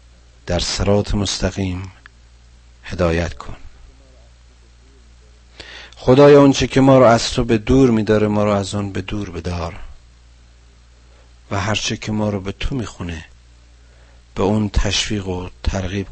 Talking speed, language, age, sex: 135 wpm, Persian, 50-69, male